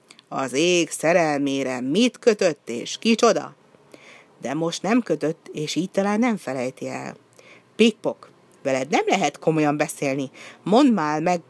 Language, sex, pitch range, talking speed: Hungarian, female, 155-220 Hz, 135 wpm